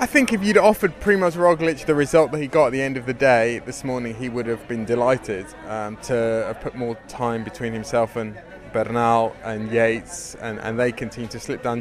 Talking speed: 225 wpm